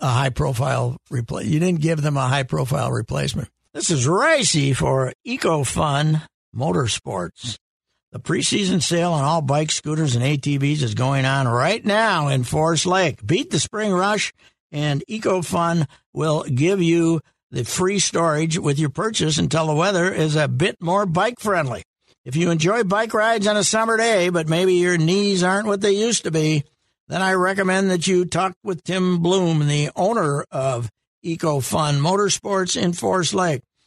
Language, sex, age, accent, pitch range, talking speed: English, male, 60-79, American, 150-200 Hz, 165 wpm